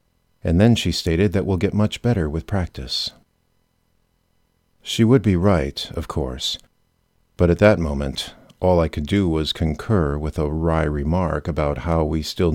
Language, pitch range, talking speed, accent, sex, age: English, 80-100 Hz, 165 wpm, American, male, 50-69